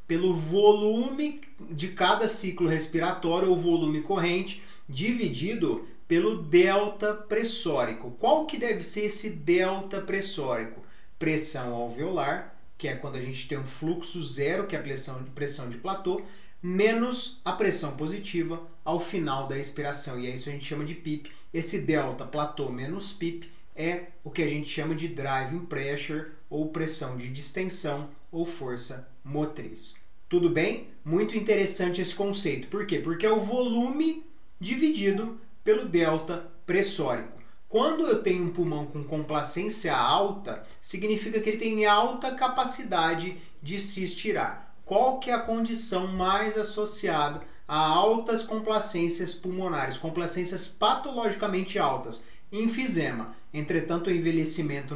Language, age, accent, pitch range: Portuguese, 30-49, Brazilian, 150-205 Hz